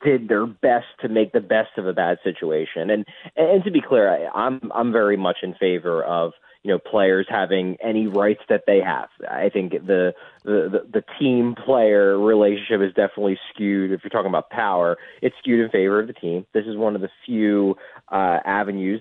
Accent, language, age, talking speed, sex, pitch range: American, English, 20-39, 205 wpm, male, 95-155 Hz